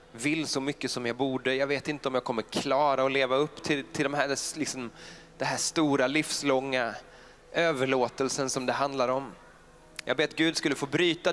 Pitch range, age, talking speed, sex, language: 110-150 Hz, 20-39, 180 wpm, male, English